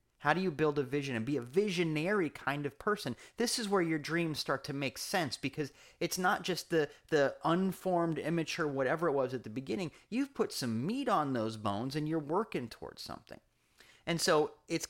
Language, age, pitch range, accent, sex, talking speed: English, 30-49, 120-165 Hz, American, male, 205 wpm